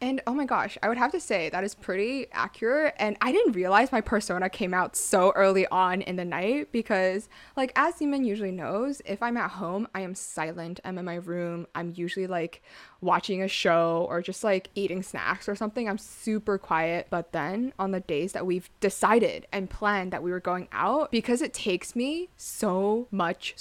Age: 20-39